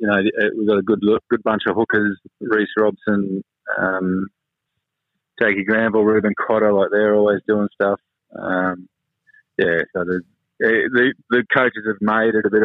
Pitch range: 100-110 Hz